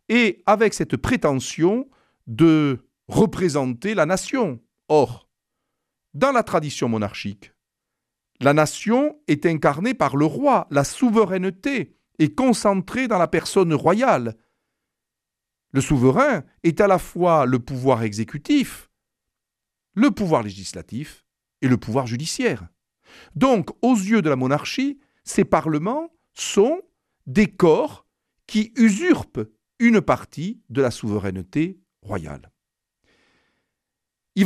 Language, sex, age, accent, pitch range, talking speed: French, male, 50-69, French, 130-215 Hz, 110 wpm